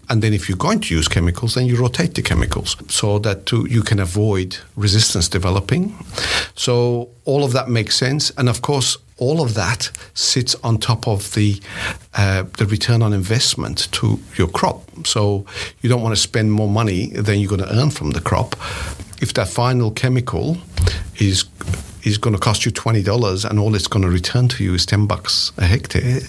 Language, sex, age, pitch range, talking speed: English, male, 50-69, 100-125 Hz, 195 wpm